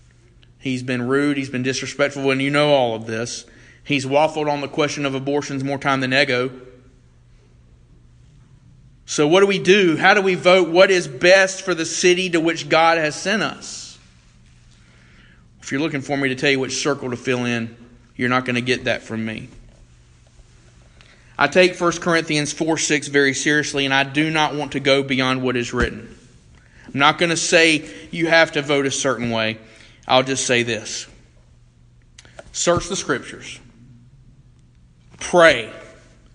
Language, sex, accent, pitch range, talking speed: English, male, American, 115-145 Hz, 170 wpm